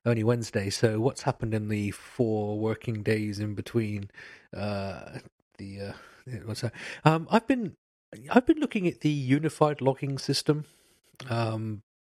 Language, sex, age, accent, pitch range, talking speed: English, male, 40-59, British, 100-120 Hz, 145 wpm